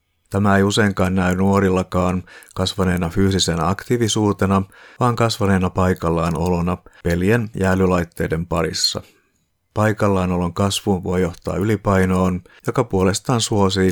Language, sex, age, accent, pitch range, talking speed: Finnish, male, 50-69, native, 85-100 Hz, 110 wpm